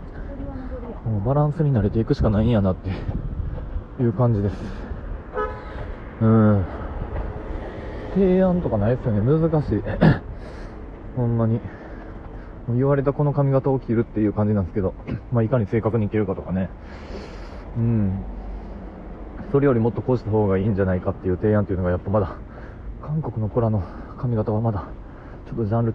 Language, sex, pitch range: Japanese, male, 95-120 Hz